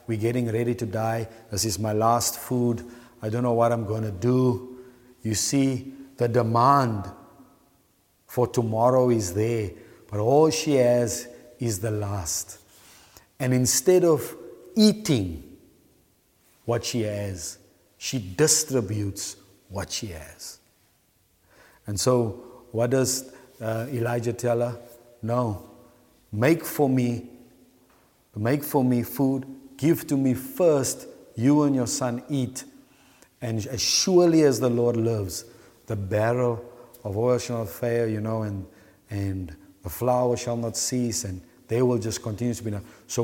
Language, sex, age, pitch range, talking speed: English, male, 50-69, 110-130 Hz, 140 wpm